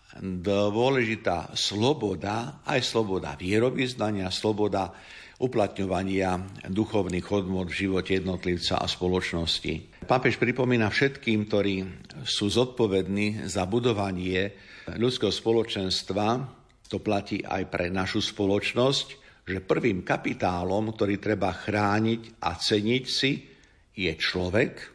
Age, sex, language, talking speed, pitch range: 50-69, male, Slovak, 100 wpm, 95-110 Hz